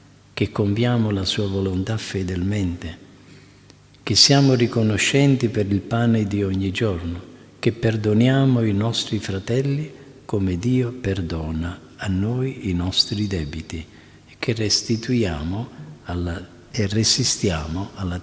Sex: male